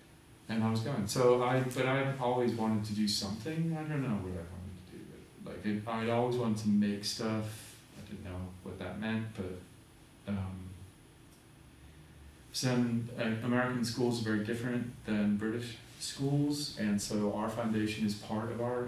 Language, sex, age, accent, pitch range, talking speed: English, male, 30-49, American, 105-130 Hz, 175 wpm